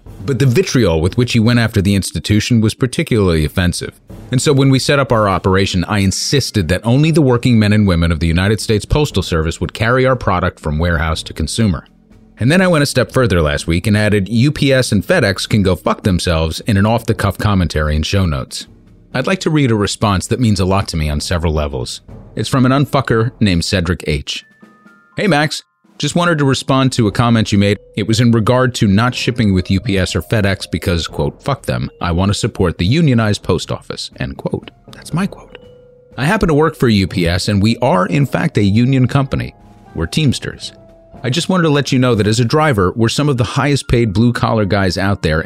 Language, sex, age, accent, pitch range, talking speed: English, male, 30-49, American, 95-130 Hz, 220 wpm